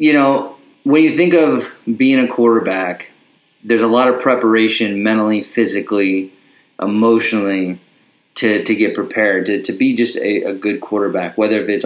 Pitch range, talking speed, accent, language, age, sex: 110-135 Hz, 160 wpm, American, English, 30-49, male